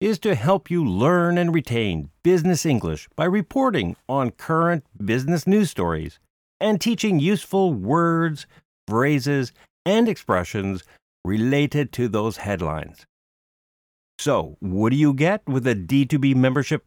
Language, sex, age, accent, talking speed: English, male, 50-69, American, 130 wpm